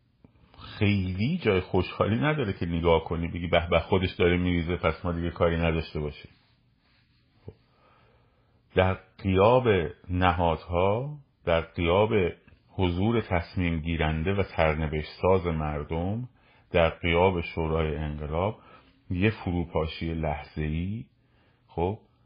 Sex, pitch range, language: male, 80-110 Hz, Persian